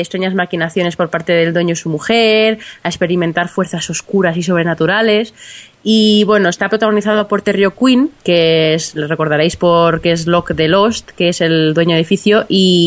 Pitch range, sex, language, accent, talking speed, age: 180-240 Hz, female, Spanish, Spanish, 175 wpm, 20-39